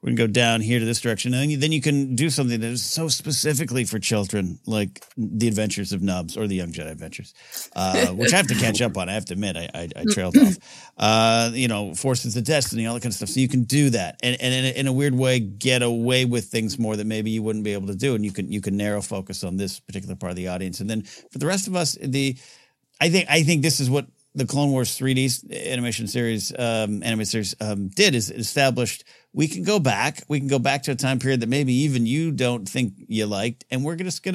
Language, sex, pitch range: English, male, 105-140 Hz